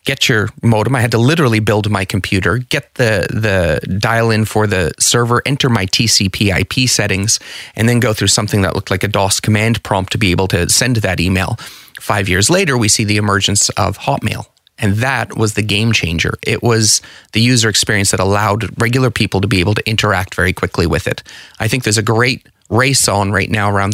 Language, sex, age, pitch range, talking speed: English, male, 30-49, 95-120 Hz, 210 wpm